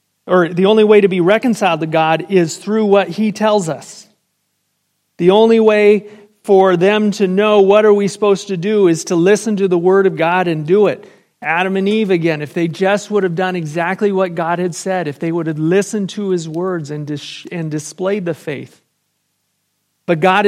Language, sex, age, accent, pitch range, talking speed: English, male, 40-59, American, 165-200 Hz, 200 wpm